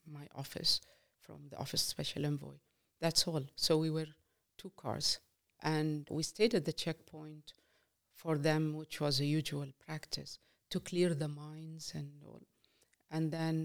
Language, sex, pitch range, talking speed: English, female, 150-175 Hz, 155 wpm